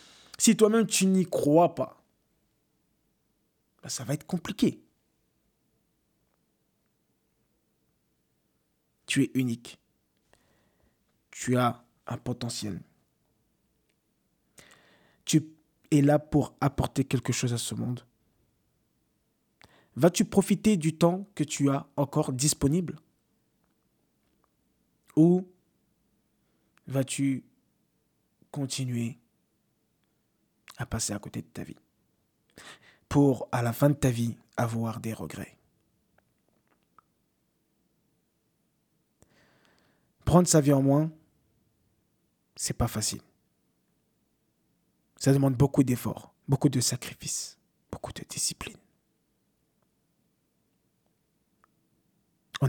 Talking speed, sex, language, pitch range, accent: 85 wpm, male, French, 125-155 Hz, French